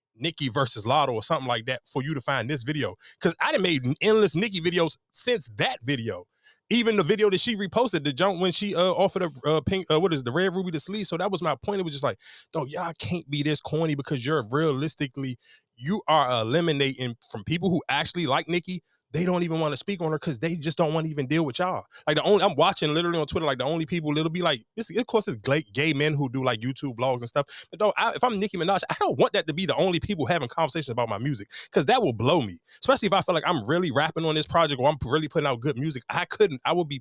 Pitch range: 130-175 Hz